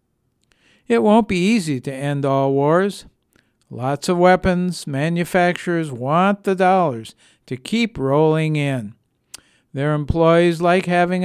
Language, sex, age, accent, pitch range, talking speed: English, male, 60-79, American, 135-175 Hz, 125 wpm